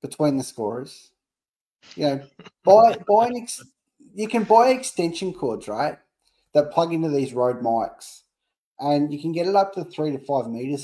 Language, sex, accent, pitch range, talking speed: English, male, Australian, 135-175 Hz, 155 wpm